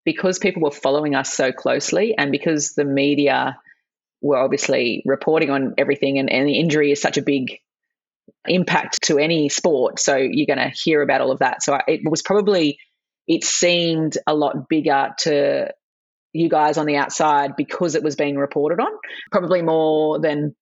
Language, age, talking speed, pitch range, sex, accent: English, 30-49, 180 wpm, 140-165 Hz, female, Australian